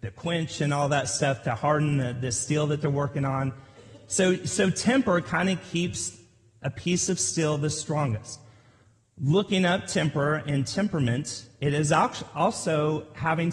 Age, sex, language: 40-59, male, English